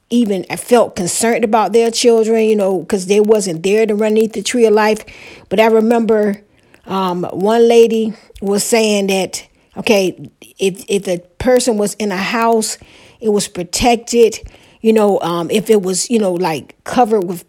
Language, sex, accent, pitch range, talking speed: English, female, American, 190-230 Hz, 180 wpm